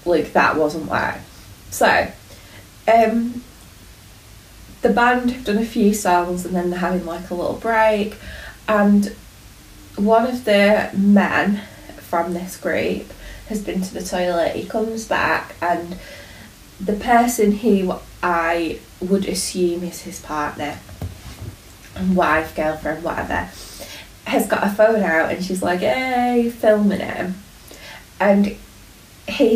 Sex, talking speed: female, 130 wpm